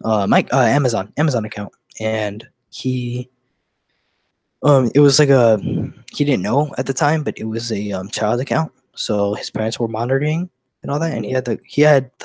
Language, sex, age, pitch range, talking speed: English, male, 20-39, 110-135 Hz, 185 wpm